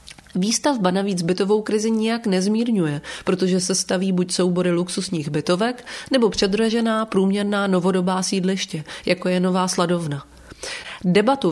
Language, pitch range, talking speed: English, 175-210 Hz, 120 wpm